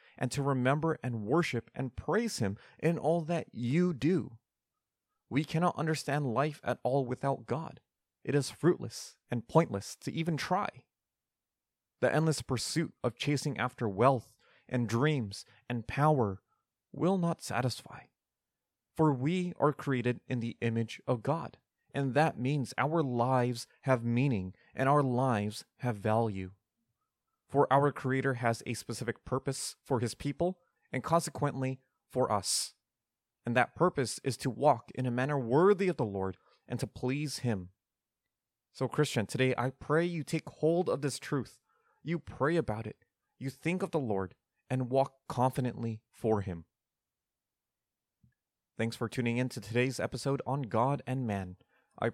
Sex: male